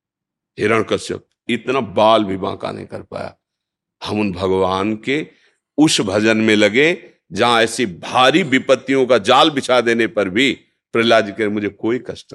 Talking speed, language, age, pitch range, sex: 150 wpm, Hindi, 50-69, 105-140 Hz, male